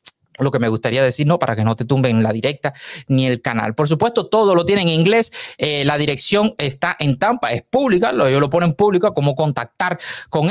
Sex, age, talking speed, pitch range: male, 30-49, 215 wpm, 135-180 Hz